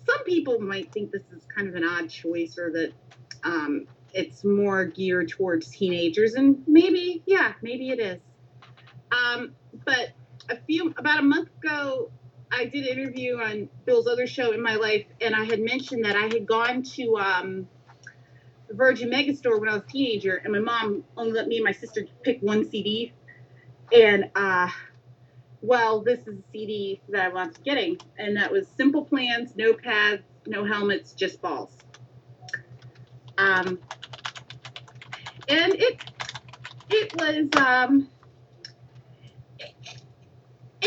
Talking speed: 150 wpm